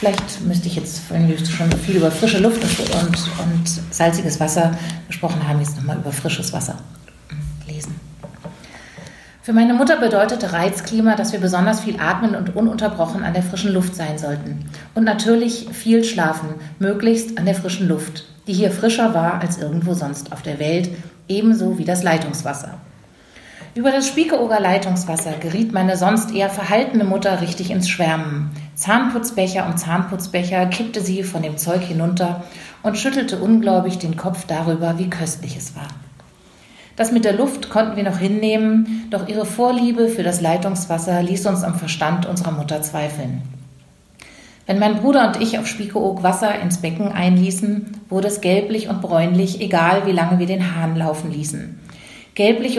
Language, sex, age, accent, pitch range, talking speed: German, female, 40-59, German, 165-210 Hz, 160 wpm